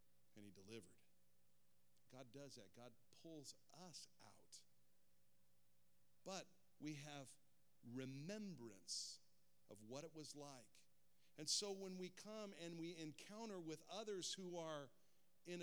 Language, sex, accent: English, male, American